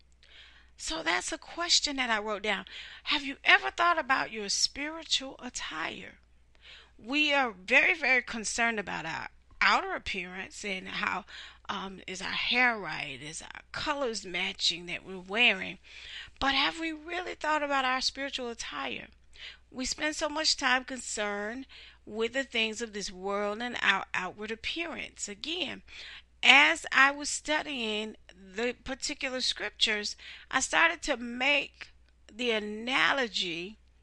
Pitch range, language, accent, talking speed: 185-275 Hz, English, American, 140 wpm